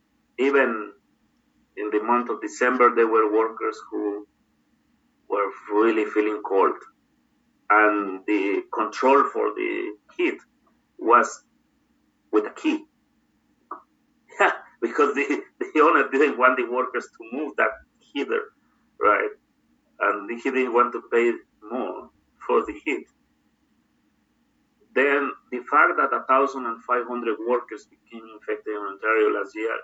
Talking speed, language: 120 wpm, English